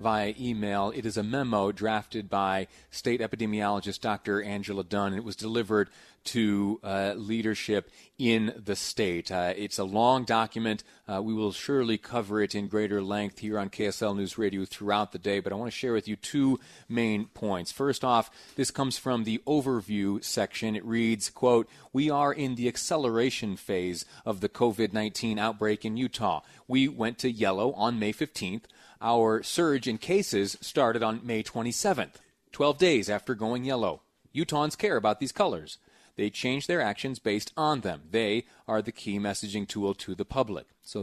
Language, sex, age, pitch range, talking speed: English, male, 30-49, 100-120 Hz, 175 wpm